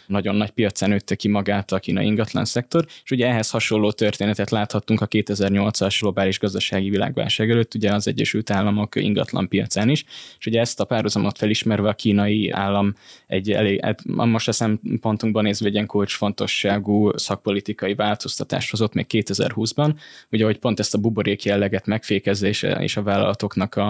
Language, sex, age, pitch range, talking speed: Hungarian, male, 10-29, 100-115 Hz, 155 wpm